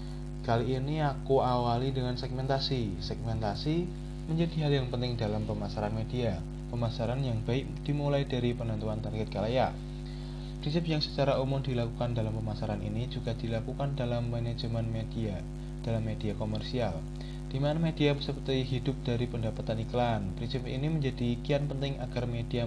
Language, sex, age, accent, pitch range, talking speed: Indonesian, male, 20-39, native, 110-135 Hz, 140 wpm